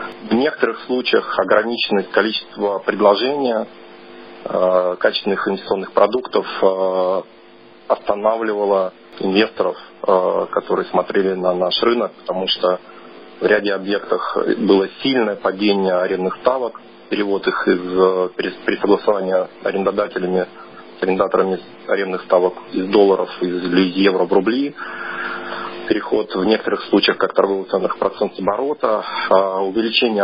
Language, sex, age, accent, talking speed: Russian, male, 40-59, native, 105 wpm